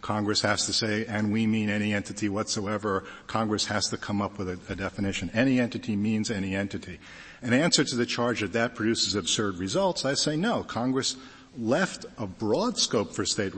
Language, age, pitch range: English, 50-69, 95-120 Hz